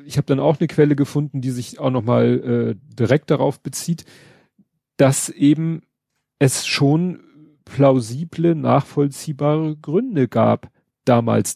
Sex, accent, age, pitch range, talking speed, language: male, German, 40-59, 125-155 Hz, 125 wpm, German